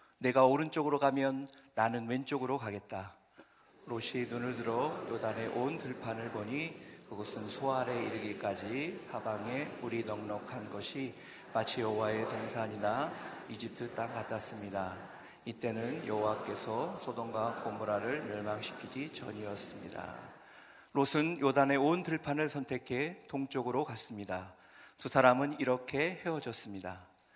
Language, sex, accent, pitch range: Korean, male, native, 110-140 Hz